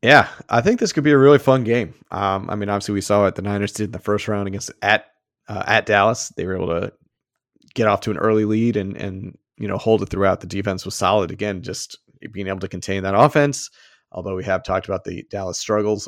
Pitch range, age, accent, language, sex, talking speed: 95-115 Hz, 30-49, American, English, male, 245 wpm